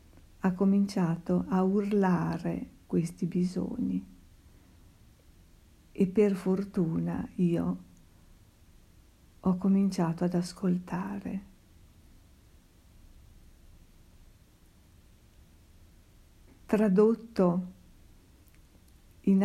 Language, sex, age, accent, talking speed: Italian, female, 50-69, native, 45 wpm